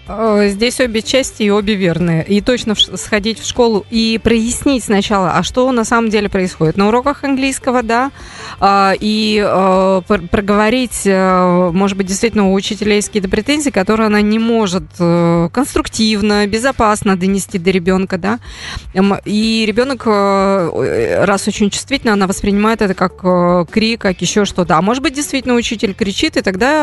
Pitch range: 190-230 Hz